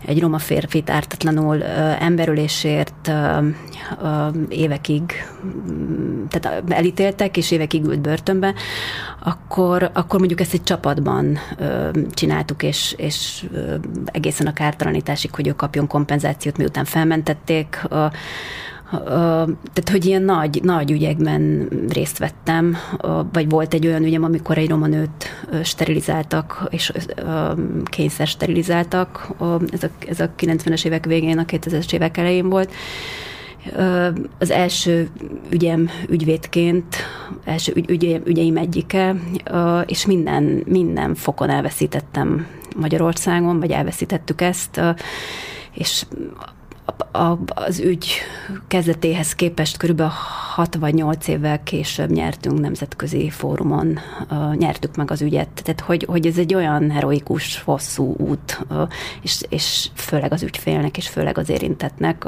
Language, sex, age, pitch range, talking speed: Hungarian, female, 30-49, 155-175 Hz, 115 wpm